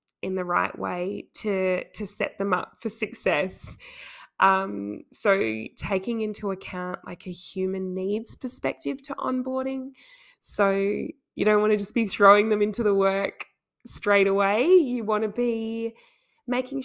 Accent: Australian